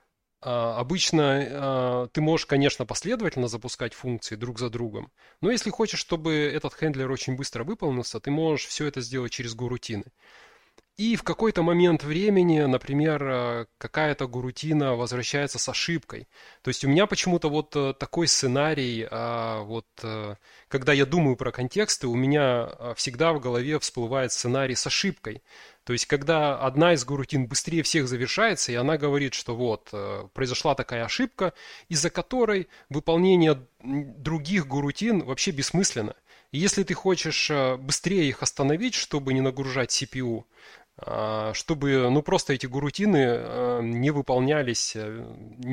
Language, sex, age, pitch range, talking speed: Russian, male, 20-39, 125-165 Hz, 135 wpm